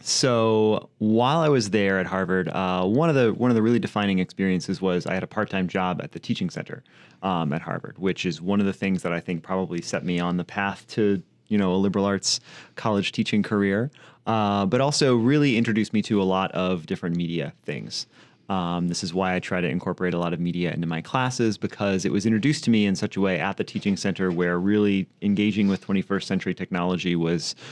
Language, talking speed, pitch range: English, 225 wpm, 90-105 Hz